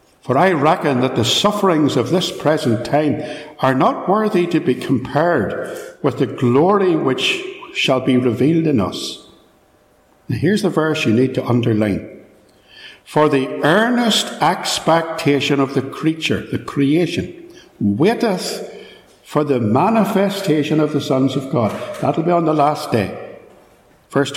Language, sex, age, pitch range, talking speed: English, male, 60-79, 130-185 Hz, 140 wpm